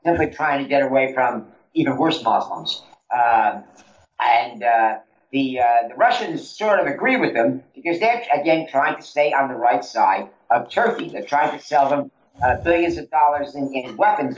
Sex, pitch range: male, 115-150 Hz